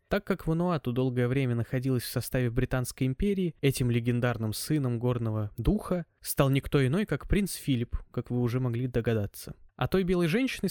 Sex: male